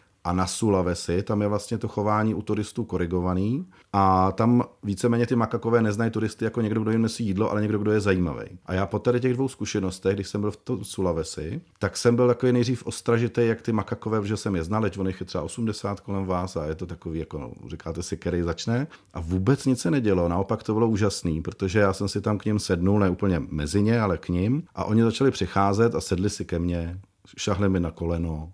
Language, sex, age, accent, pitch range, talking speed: Czech, male, 40-59, native, 90-115 Hz, 225 wpm